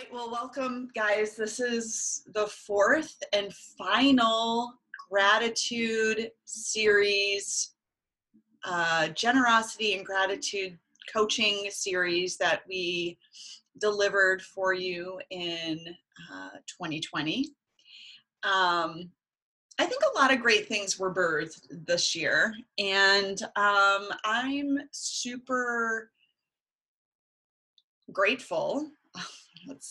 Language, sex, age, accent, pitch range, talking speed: English, female, 30-49, American, 175-230 Hz, 85 wpm